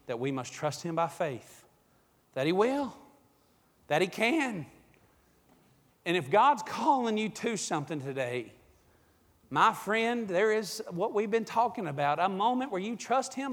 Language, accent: English, American